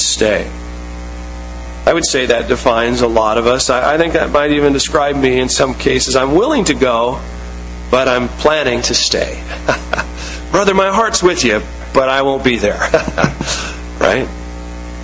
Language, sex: English, male